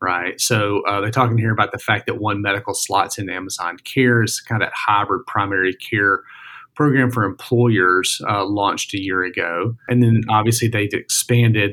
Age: 40-59